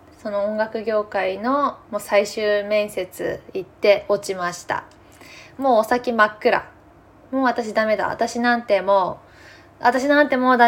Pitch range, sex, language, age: 200-280 Hz, female, Japanese, 20-39